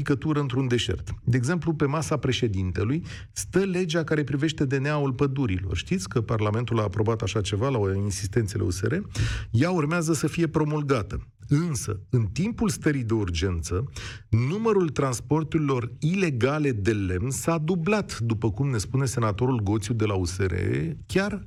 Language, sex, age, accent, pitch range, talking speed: Romanian, male, 40-59, native, 110-160 Hz, 145 wpm